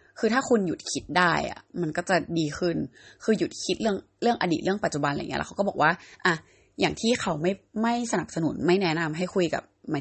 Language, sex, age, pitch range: Thai, female, 20-39, 160-210 Hz